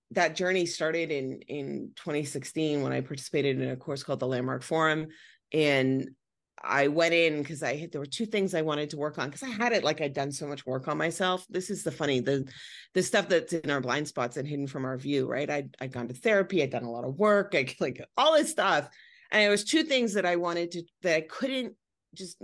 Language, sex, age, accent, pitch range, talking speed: English, female, 30-49, American, 140-180 Hz, 245 wpm